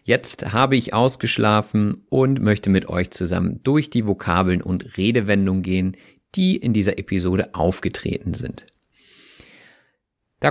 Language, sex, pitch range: German, male, 95-125 Hz